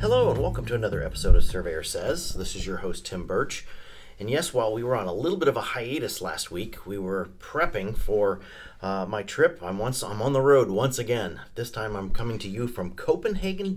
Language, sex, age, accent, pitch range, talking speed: English, male, 40-59, American, 95-140 Hz, 225 wpm